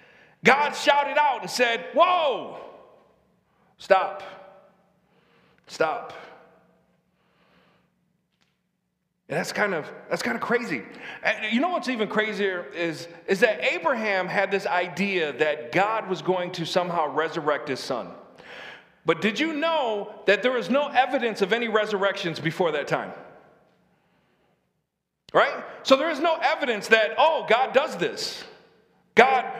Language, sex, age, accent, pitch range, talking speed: English, male, 40-59, American, 185-250 Hz, 130 wpm